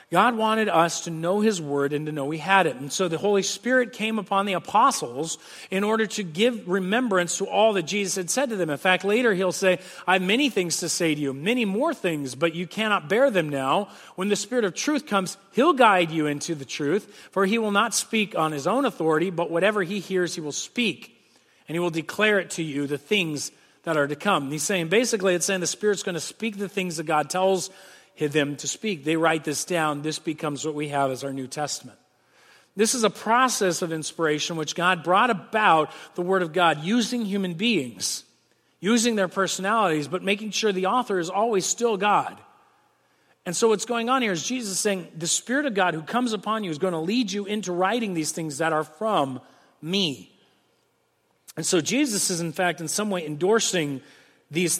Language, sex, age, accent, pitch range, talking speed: English, male, 40-59, American, 160-210 Hz, 220 wpm